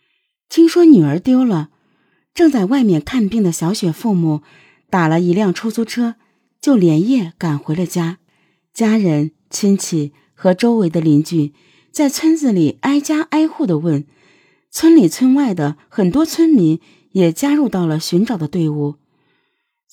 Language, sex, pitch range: Chinese, female, 160-245 Hz